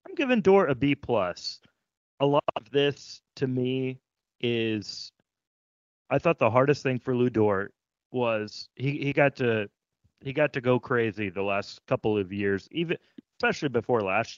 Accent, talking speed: American, 165 wpm